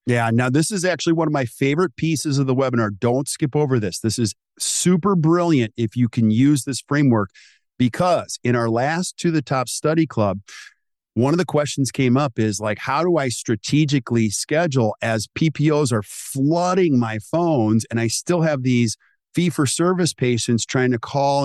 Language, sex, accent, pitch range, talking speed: English, male, American, 115-150 Hz, 185 wpm